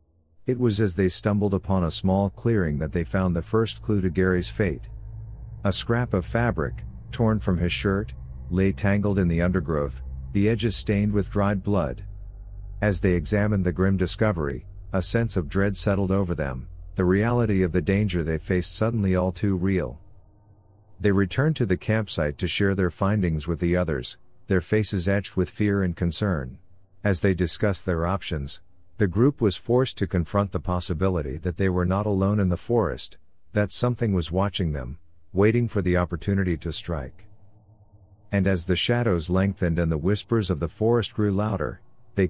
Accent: American